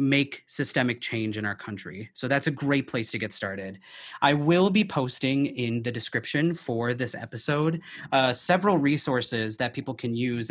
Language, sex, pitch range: English, male, 115-140 Hz